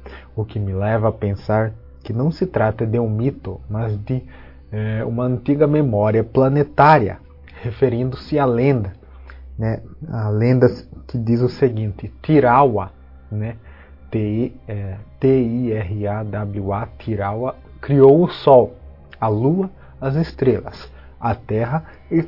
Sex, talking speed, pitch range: male, 115 wpm, 105-135 Hz